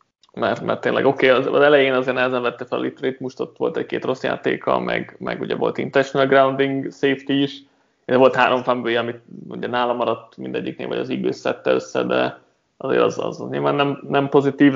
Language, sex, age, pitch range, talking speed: Hungarian, male, 20-39, 115-140 Hz, 205 wpm